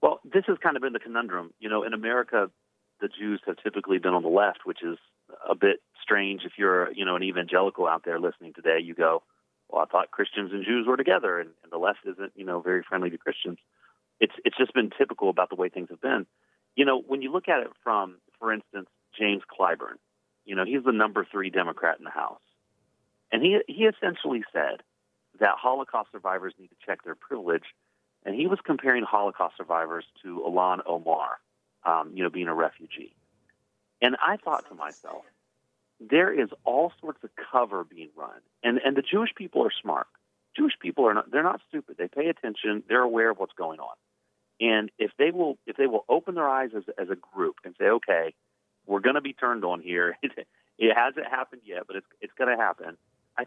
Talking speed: 210 wpm